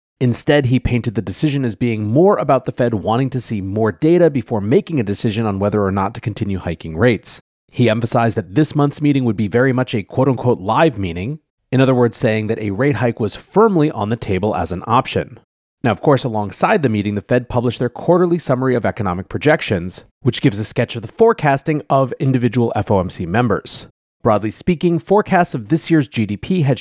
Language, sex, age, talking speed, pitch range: English, male, 30-49, 205 wpm, 105-145 Hz